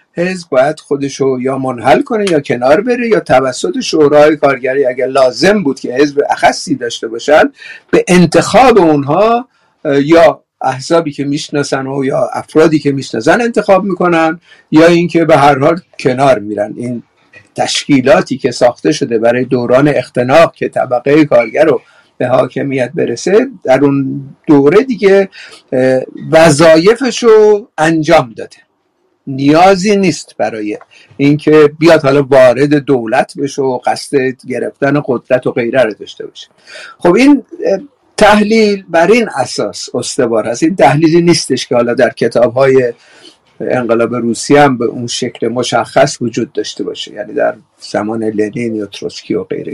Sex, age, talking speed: male, 50-69, 140 wpm